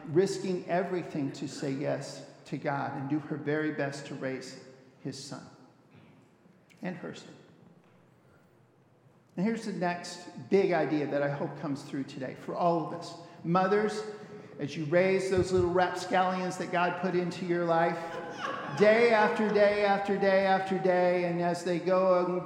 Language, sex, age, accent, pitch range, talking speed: English, male, 50-69, American, 160-210 Hz, 160 wpm